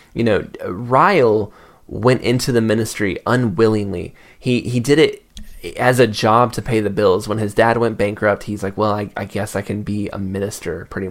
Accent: American